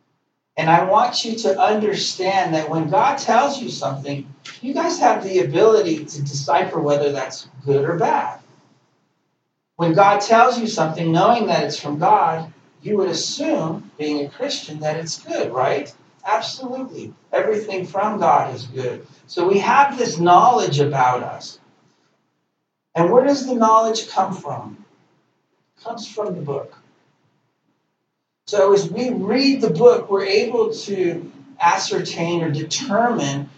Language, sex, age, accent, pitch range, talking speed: English, male, 40-59, American, 155-220 Hz, 145 wpm